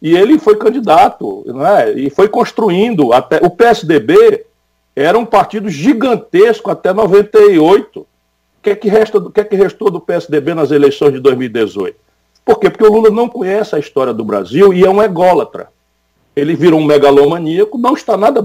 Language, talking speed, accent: Portuguese, 185 wpm, Brazilian